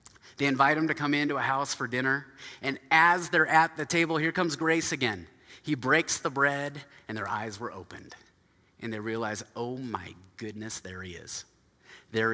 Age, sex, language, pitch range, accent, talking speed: 30-49, male, English, 120-160 Hz, American, 190 wpm